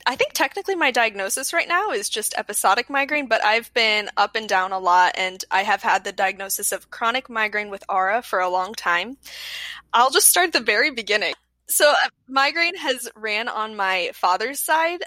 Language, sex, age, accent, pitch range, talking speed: English, female, 10-29, American, 195-270 Hz, 195 wpm